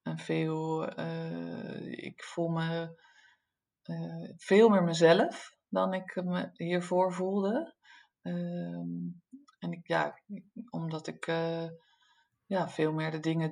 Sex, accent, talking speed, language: female, Dutch, 120 wpm, Dutch